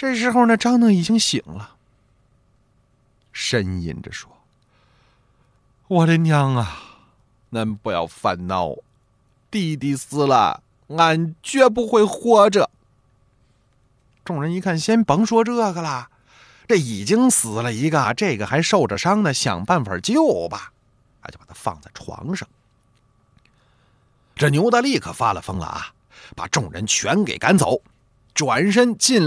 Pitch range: 115-170 Hz